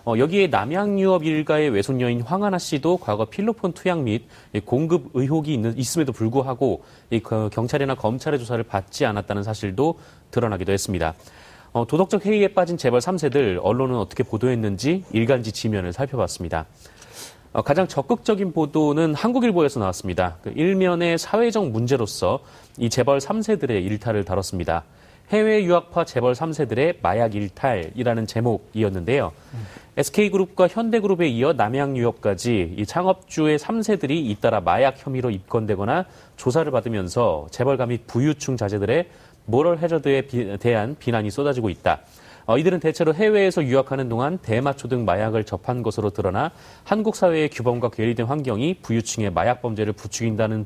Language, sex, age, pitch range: Korean, male, 30-49, 110-160 Hz